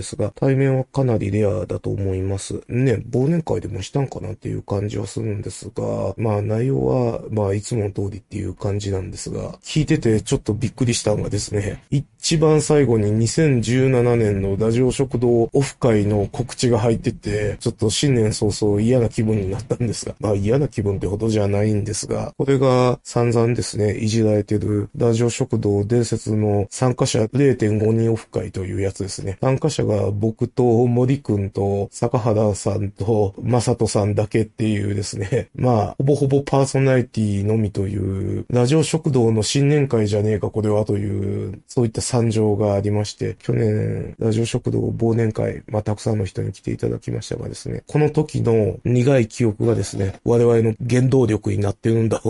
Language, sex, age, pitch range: Japanese, male, 20-39, 105-125 Hz